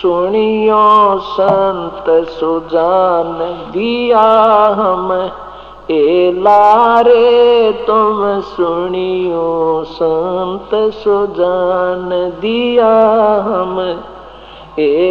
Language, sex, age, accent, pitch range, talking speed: Hindi, male, 50-69, native, 180-215 Hz, 55 wpm